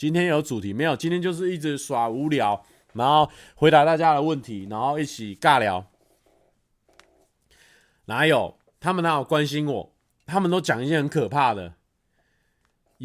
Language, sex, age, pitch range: Chinese, male, 30-49, 120-170 Hz